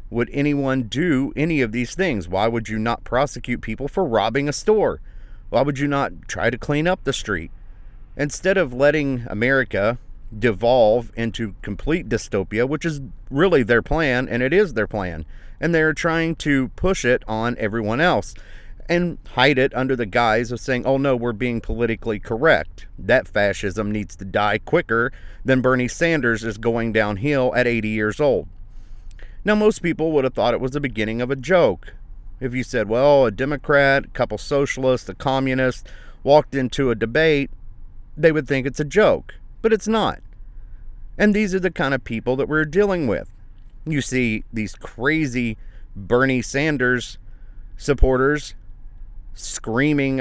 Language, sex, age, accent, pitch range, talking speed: English, male, 40-59, American, 110-145 Hz, 165 wpm